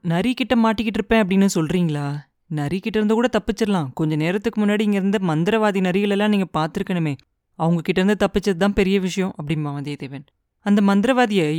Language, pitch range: Tamil, 175-230 Hz